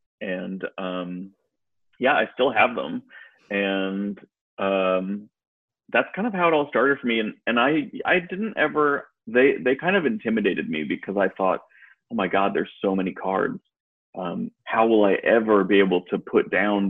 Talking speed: 180 wpm